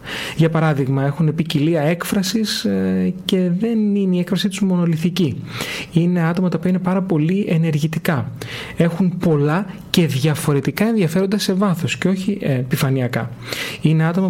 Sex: male